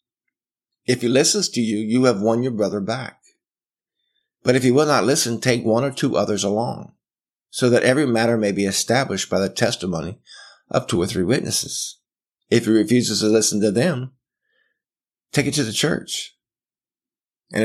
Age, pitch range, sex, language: 50-69, 100-140 Hz, male, English